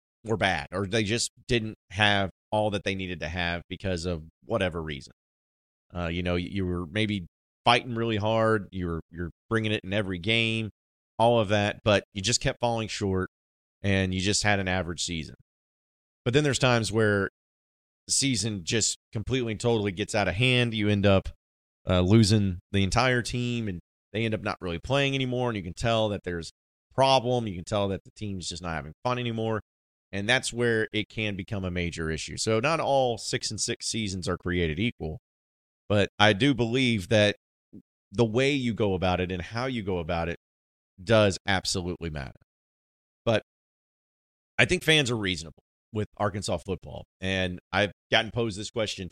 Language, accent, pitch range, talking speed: English, American, 85-115 Hz, 185 wpm